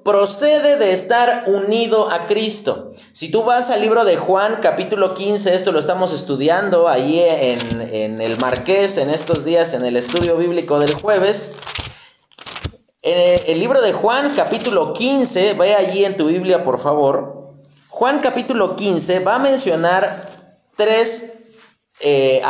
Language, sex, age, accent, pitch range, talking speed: Spanish, male, 40-59, Mexican, 165-225 Hz, 150 wpm